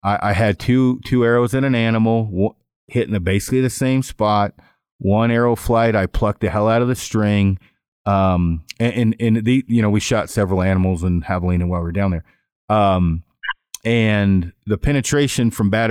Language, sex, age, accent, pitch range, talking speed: English, male, 40-59, American, 95-115 Hz, 190 wpm